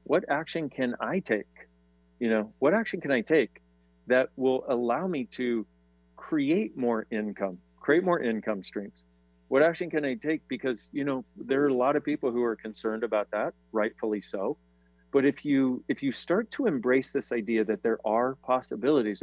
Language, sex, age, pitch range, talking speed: English, male, 40-59, 105-150 Hz, 185 wpm